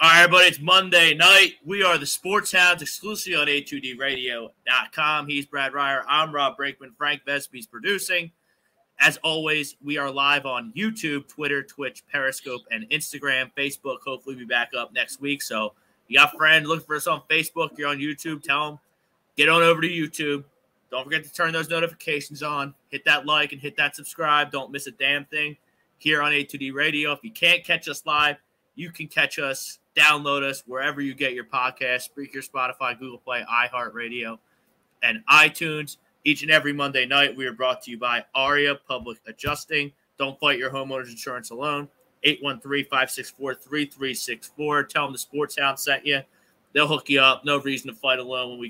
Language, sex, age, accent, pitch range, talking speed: English, male, 20-39, American, 130-150 Hz, 185 wpm